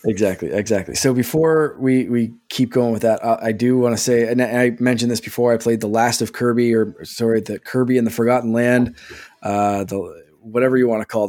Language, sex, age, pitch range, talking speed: English, male, 20-39, 110-140 Hz, 230 wpm